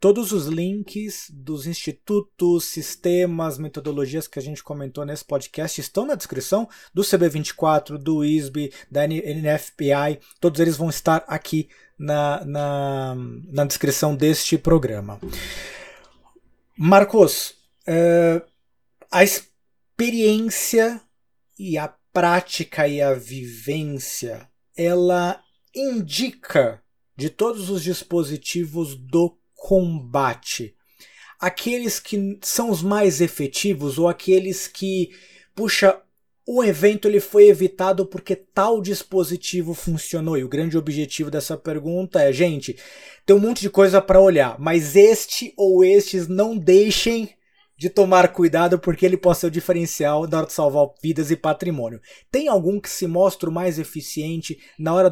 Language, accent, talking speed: Portuguese, Brazilian, 125 wpm